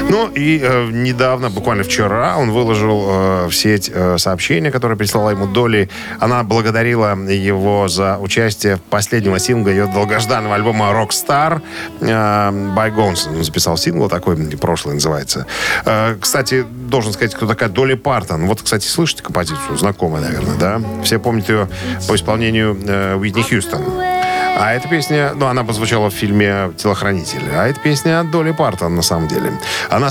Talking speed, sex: 155 wpm, male